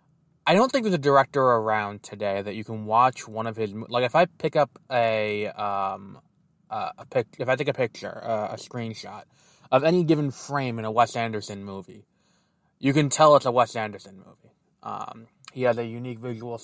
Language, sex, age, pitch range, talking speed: English, male, 20-39, 110-135 Hz, 200 wpm